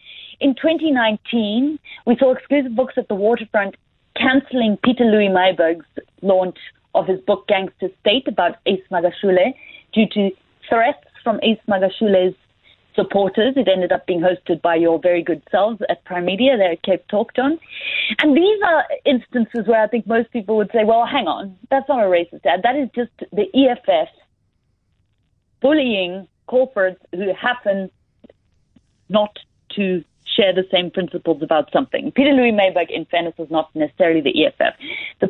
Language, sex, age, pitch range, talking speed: English, female, 30-49, 190-270 Hz, 155 wpm